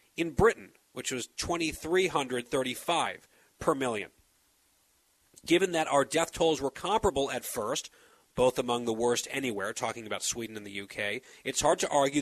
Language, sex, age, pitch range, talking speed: English, male, 40-59, 135-175 Hz, 150 wpm